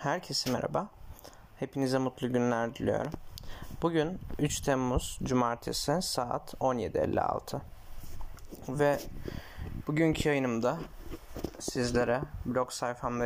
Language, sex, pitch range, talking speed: Turkish, male, 115-135 Hz, 80 wpm